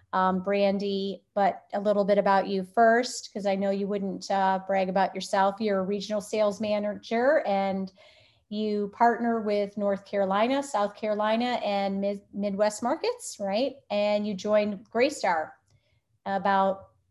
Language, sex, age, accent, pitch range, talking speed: English, female, 30-49, American, 200-240 Hz, 145 wpm